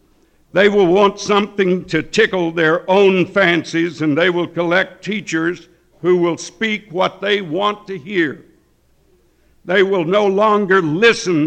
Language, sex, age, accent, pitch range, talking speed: English, male, 60-79, American, 155-195 Hz, 140 wpm